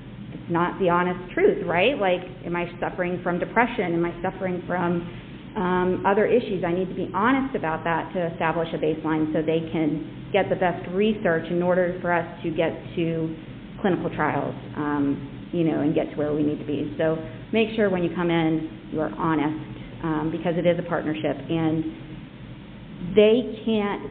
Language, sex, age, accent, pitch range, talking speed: English, female, 40-59, American, 160-180 Hz, 190 wpm